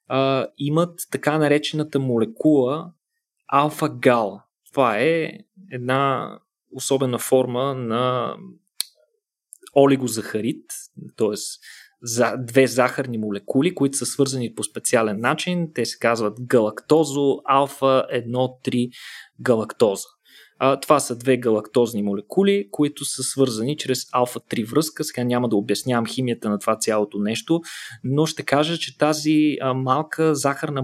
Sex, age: male, 20-39